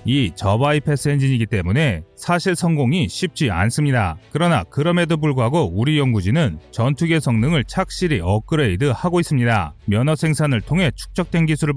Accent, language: native, Korean